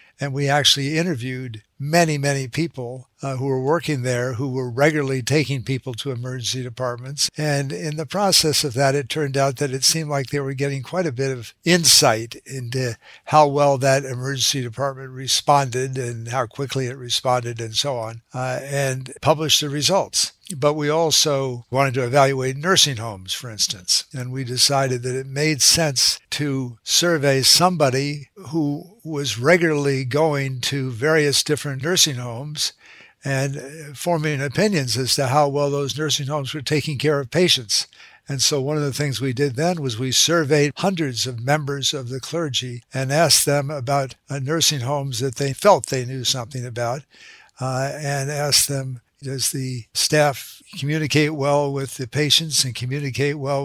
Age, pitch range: 60-79, 130-150 Hz